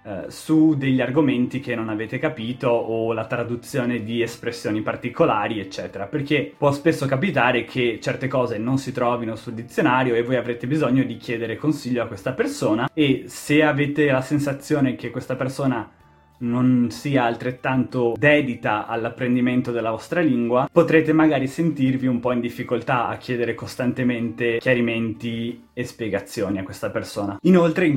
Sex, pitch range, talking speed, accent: male, 115-140 Hz, 150 wpm, native